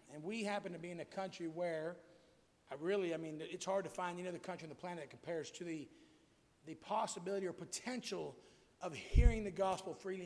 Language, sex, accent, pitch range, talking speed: English, male, American, 165-210 Hz, 210 wpm